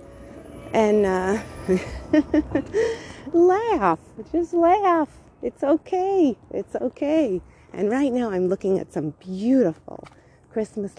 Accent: American